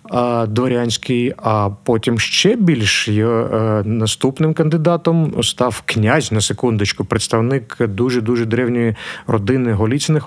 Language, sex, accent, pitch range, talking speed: Ukrainian, male, native, 110-130 Hz, 105 wpm